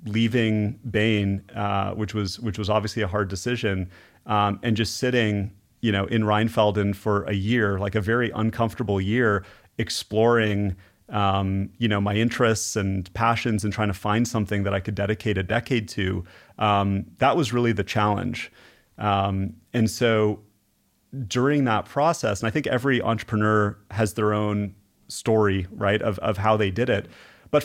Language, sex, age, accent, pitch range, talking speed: English, male, 30-49, American, 105-125 Hz, 165 wpm